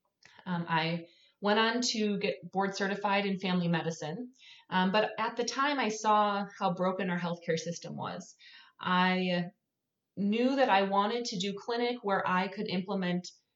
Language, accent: English, American